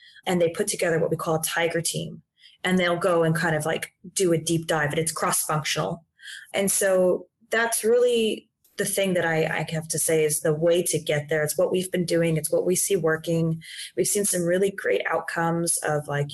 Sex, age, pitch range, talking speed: female, 20-39, 155-185 Hz, 220 wpm